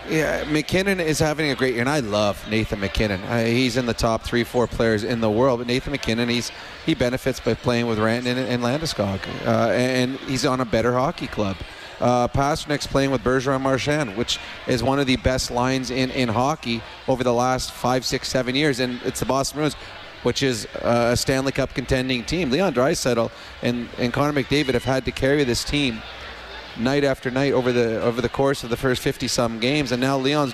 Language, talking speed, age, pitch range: English, 205 wpm, 30-49, 120-140 Hz